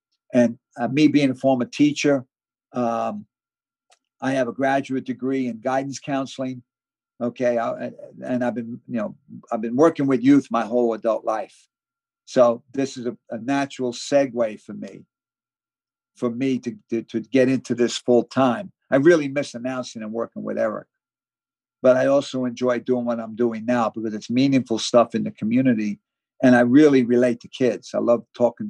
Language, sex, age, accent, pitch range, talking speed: English, male, 50-69, American, 120-145 Hz, 175 wpm